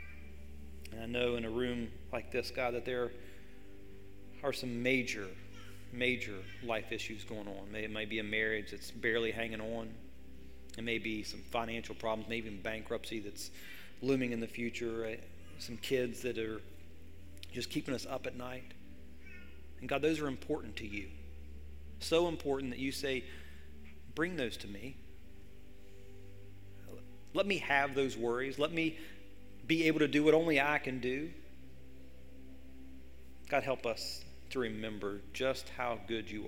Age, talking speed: 40-59, 150 wpm